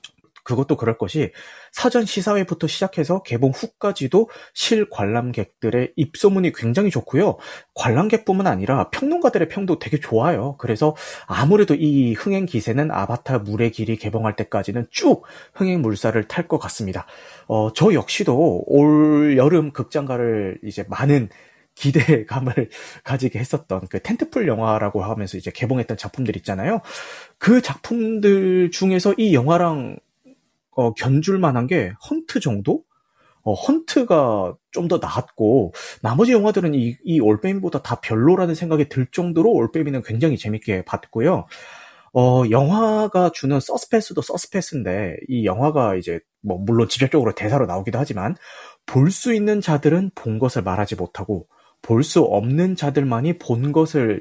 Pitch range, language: 115-180 Hz, Korean